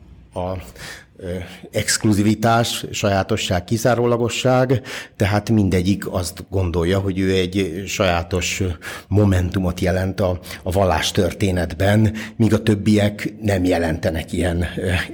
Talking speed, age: 100 wpm, 60-79